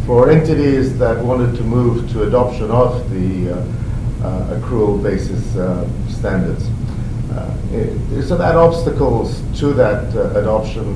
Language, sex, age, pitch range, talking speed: English, male, 50-69, 105-125 Hz, 135 wpm